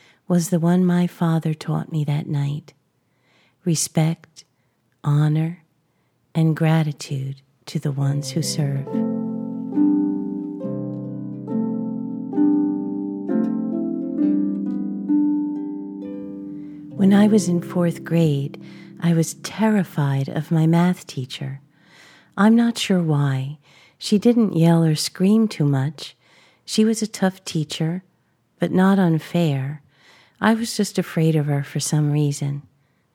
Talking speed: 105 wpm